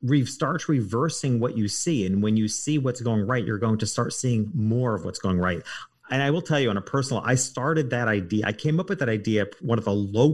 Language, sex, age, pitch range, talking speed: English, male, 40-59, 100-125 Hz, 255 wpm